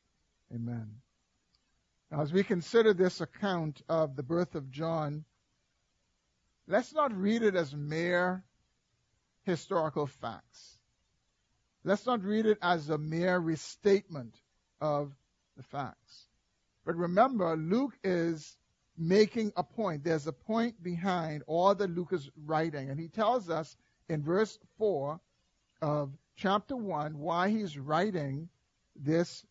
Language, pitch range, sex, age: English, 145-190 Hz, male, 50-69